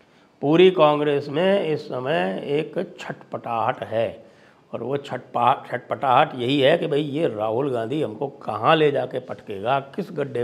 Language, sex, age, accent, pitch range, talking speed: English, male, 60-79, Indian, 115-160 Hz, 150 wpm